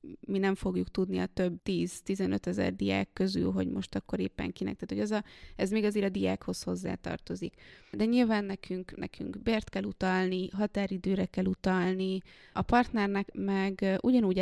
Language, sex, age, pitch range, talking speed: Hungarian, female, 20-39, 170-210 Hz, 165 wpm